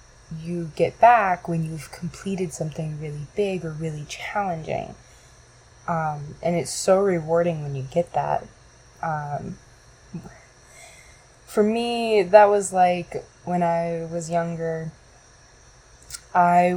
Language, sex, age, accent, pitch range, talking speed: English, female, 20-39, American, 145-175 Hz, 115 wpm